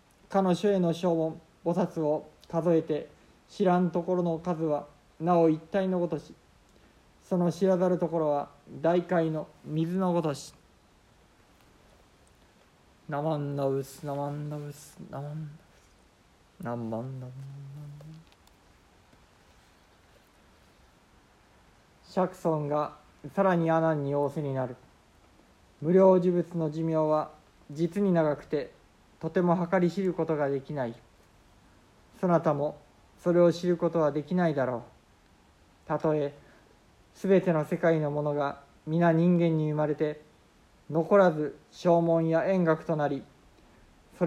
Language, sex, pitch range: Japanese, male, 145-175 Hz